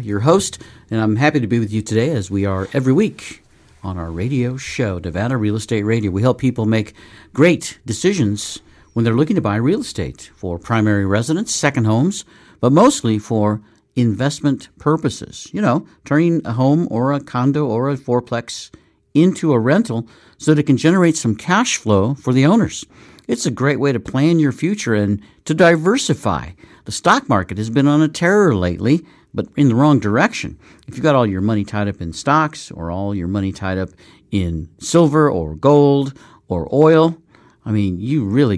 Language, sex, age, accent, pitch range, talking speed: English, male, 50-69, American, 100-145 Hz, 190 wpm